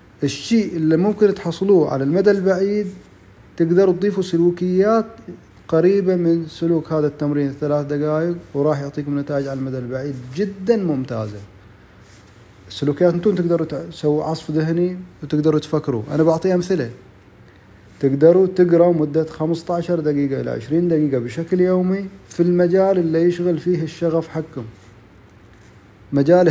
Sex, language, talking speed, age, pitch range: male, Arabic, 125 wpm, 30-49, 140-180 Hz